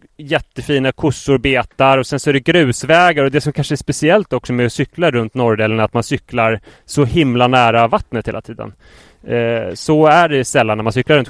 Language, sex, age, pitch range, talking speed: English, male, 30-49, 115-145 Hz, 205 wpm